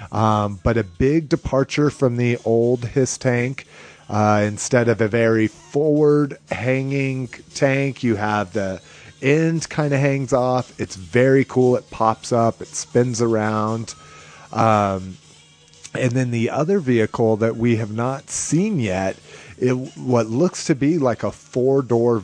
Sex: male